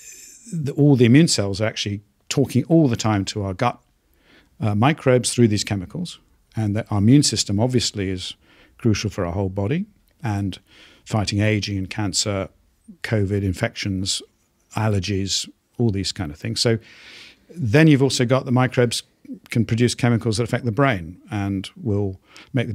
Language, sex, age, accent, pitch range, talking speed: English, male, 50-69, British, 100-120 Hz, 160 wpm